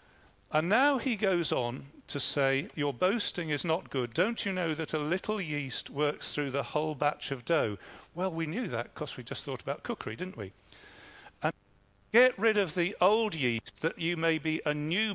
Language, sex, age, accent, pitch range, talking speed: English, male, 50-69, British, 140-190 Hz, 200 wpm